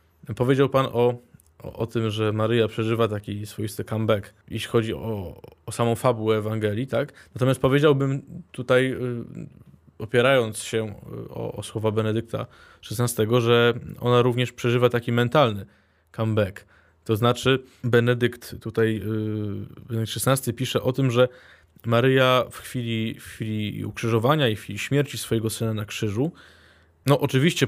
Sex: male